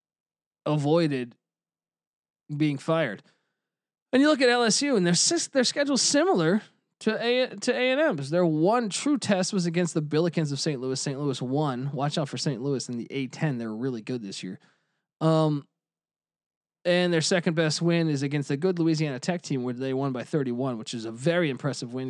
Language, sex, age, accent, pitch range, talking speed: English, male, 20-39, American, 140-180 Hz, 195 wpm